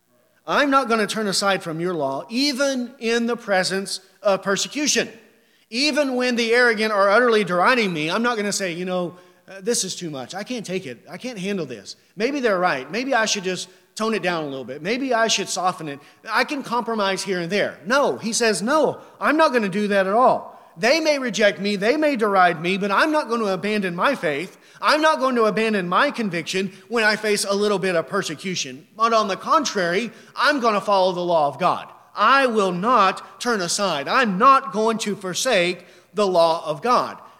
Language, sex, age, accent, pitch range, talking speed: English, male, 30-49, American, 185-235 Hz, 220 wpm